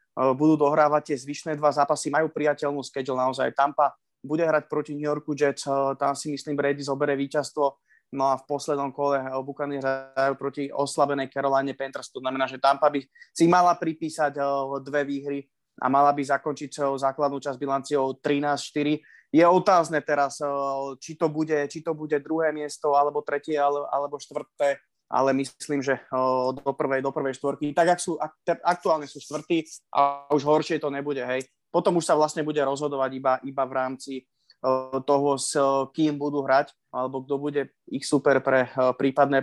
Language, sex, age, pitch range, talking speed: Slovak, male, 20-39, 135-150 Hz, 165 wpm